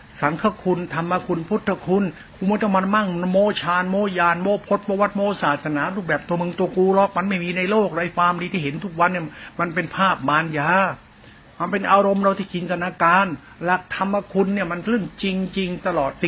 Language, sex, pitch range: Thai, male, 155-200 Hz